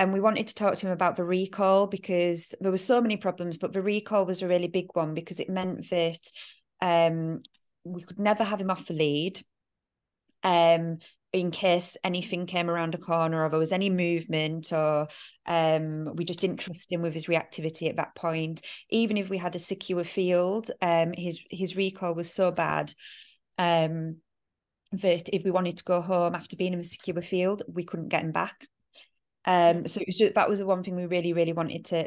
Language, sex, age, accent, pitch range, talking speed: English, female, 20-39, British, 170-190 Hz, 210 wpm